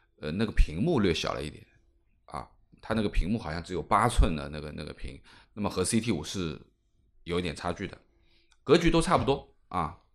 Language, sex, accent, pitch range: Chinese, male, native, 90-135 Hz